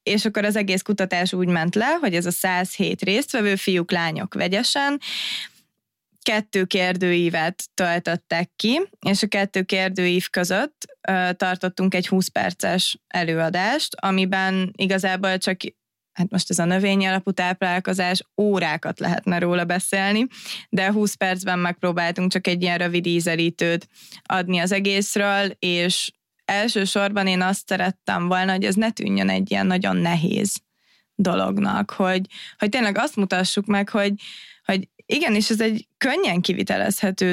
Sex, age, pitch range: female, 20-39, 180-200 Hz